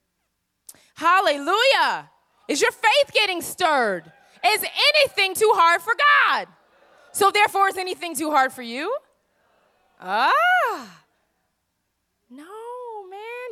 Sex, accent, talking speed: female, American, 100 wpm